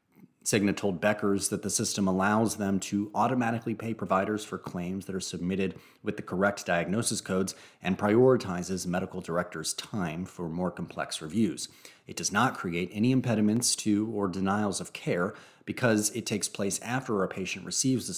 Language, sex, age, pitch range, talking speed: English, male, 30-49, 95-115 Hz, 170 wpm